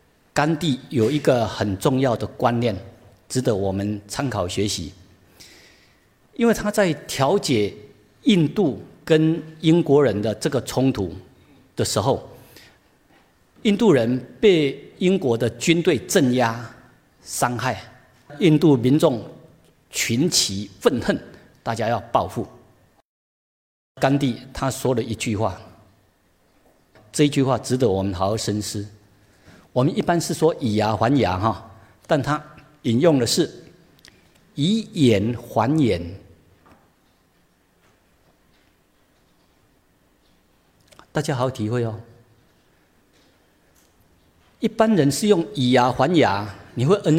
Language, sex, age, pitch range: Chinese, male, 50-69, 100-150 Hz